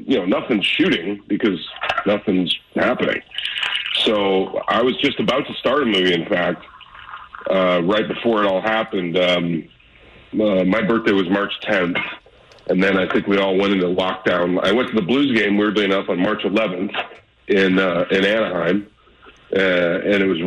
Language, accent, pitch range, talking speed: English, American, 90-110 Hz, 175 wpm